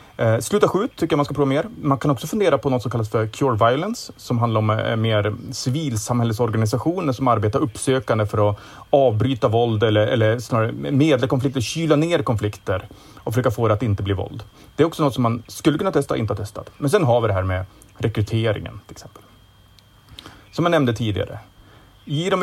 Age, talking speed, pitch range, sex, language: 30-49, 200 wpm, 105-135 Hz, male, Swedish